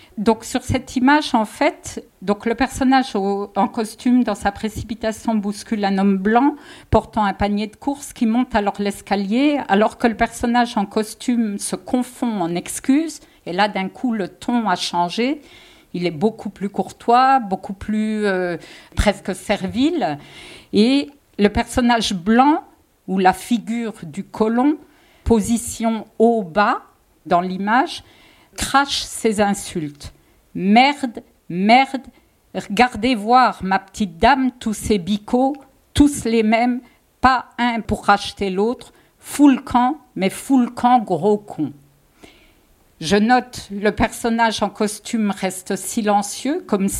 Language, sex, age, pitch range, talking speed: French, female, 50-69, 200-255 Hz, 130 wpm